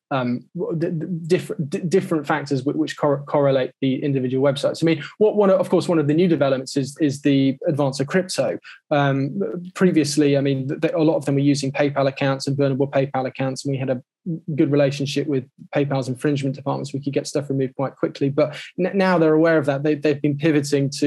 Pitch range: 140-160 Hz